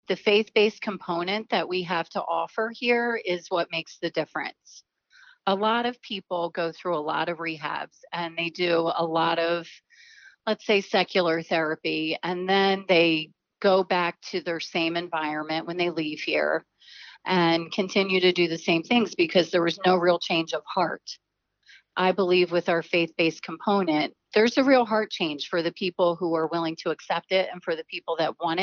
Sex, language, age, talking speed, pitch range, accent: female, English, 30-49, 185 wpm, 165-195 Hz, American